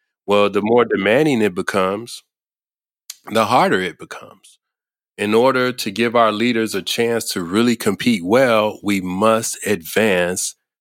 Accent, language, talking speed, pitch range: American, English, 140 wpm, 90-110 Hz